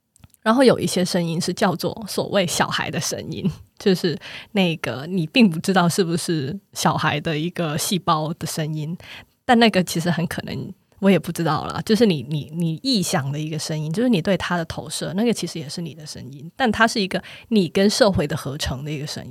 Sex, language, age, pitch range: female, Chinese, 20-39, 155-195 Hz